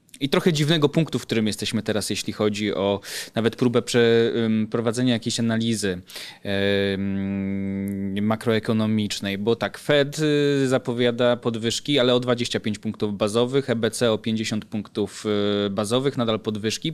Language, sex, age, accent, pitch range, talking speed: Polish, male, 20-39, native, 110-130 Hz, 120 wpm